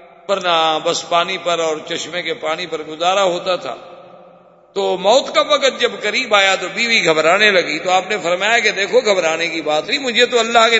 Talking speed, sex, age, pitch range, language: 210 wpm, male, 50-69, 170-210 Hz, Urdu